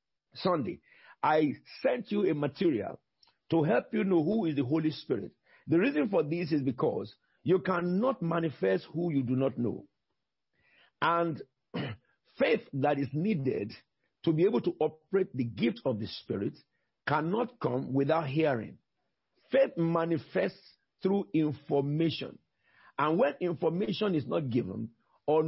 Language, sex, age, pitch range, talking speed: English, male, 50-69, 130-170 Hz, 140 wpm